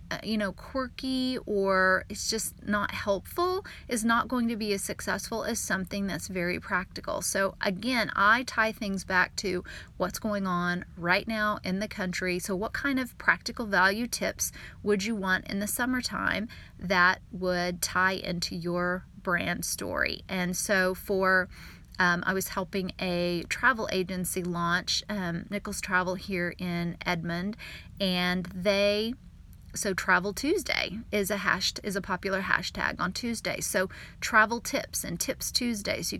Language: English